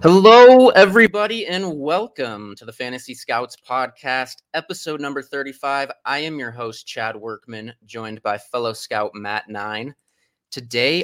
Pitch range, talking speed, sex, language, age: 105-130 Hz, 135 wpm, male, English, 20-39